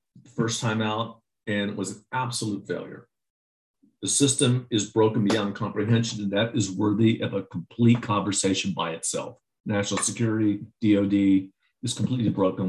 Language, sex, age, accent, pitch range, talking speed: English, male, 50-69, American, 100-120 Hz, 145 wpm